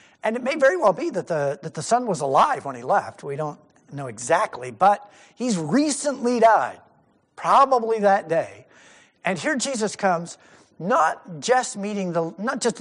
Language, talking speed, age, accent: English, 175 wpm, 50-69, American